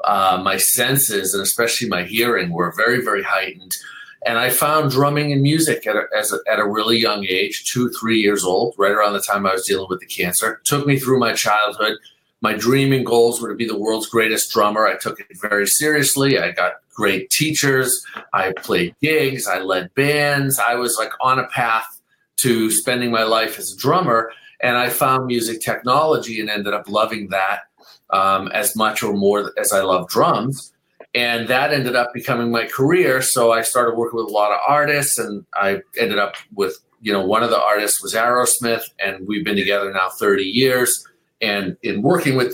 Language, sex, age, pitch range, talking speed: English, male, 40-59, 105-130 Hz, 195 wpm